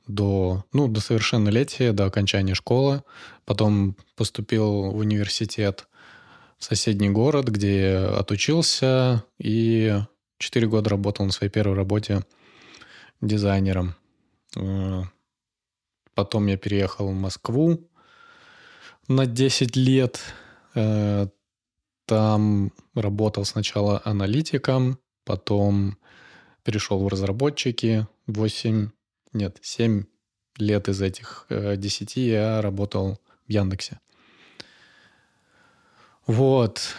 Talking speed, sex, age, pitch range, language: 85 wpm, male, 20-39, 100-115 Hz, Russian